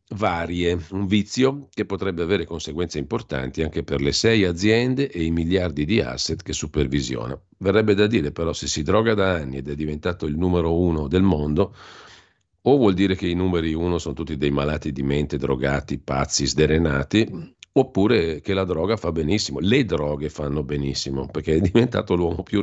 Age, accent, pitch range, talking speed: 50-69, native, 75-95 Hz, 180 wpm